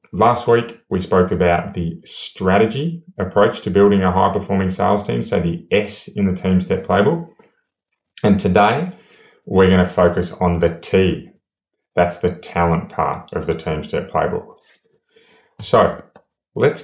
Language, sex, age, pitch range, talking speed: English, male, 20-39, 85-100 Hz, 145 wpm